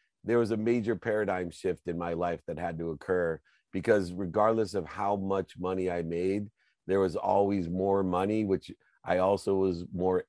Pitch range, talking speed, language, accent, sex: 85-100 Hz, 180 wpm, English, American, male